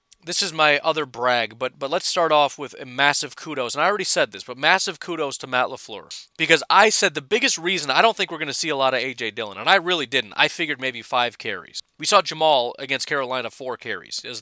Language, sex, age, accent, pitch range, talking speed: English, male, 30-49, American, 140-185 Hz, 250 wpm